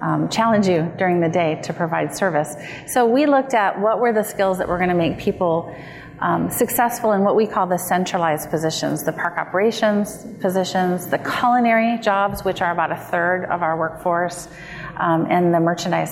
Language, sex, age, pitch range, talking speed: English, female, 30-49, 170-210 Hz, 185 wpm